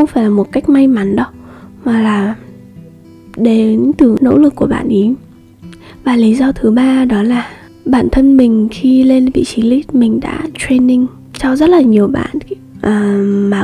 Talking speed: 185 wpm